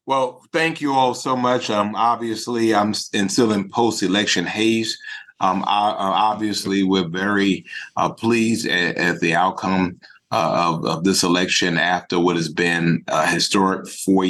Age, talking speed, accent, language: 30-49, 145 wpm, American, English